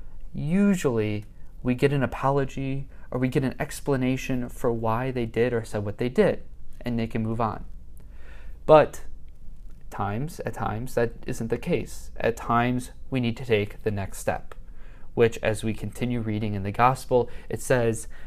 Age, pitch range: 20-39, 105-140 Hz